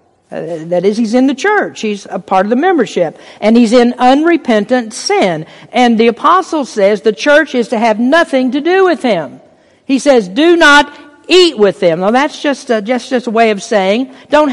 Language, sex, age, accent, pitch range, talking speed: English, female, 50-69, American, 210-275 Hz, 205 wpm